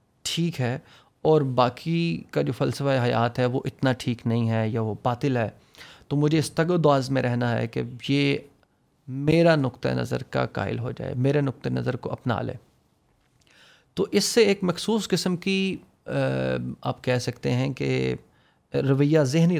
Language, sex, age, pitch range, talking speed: Urdu, male, 30-49, 120-145 Hz, 170 wpm